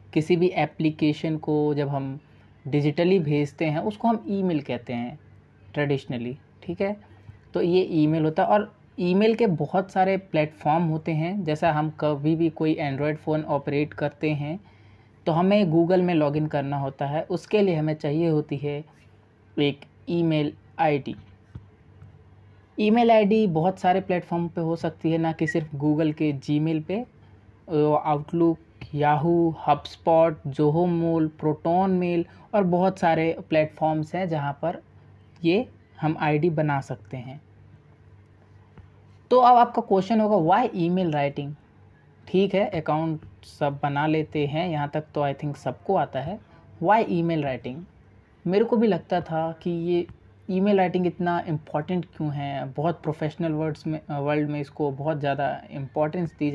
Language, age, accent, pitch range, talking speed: Hindi, 20-39, native, 140-175 Hz, 155 wpm